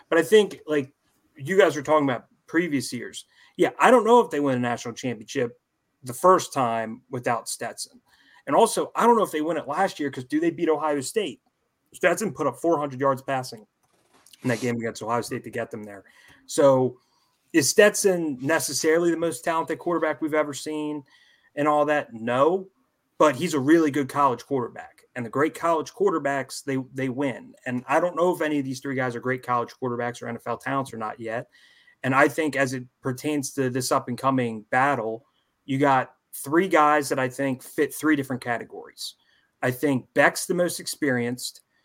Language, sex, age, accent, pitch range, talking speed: English, male, 30-49, American, 125-155 Hz, 200 wpm